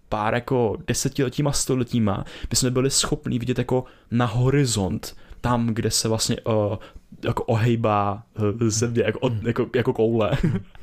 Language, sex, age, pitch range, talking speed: Czech, male, 20-39, 110-130 Hz, 140 wpm